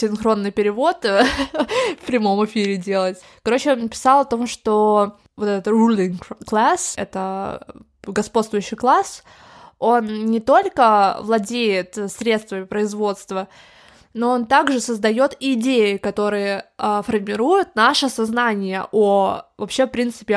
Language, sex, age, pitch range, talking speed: Russian, female, 20-39, 205-240 Hz, 110 wpm